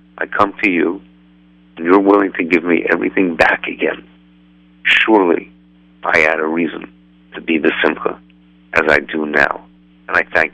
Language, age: English, 50-69